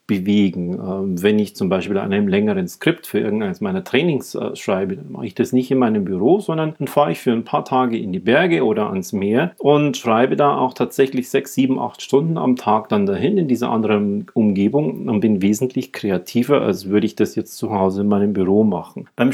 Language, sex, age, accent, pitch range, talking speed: German, male, 40-59, German, 105-145 Hz, 210 wpm